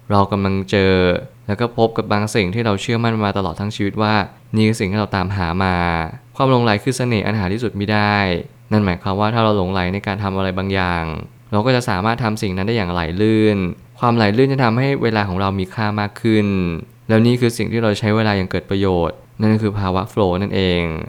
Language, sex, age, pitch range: Thai, male, 20-39, 95-115 Hz